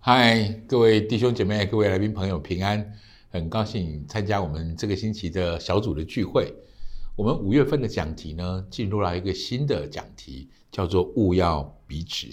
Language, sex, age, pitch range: Chinese, male, 60-79, 90-115 Hz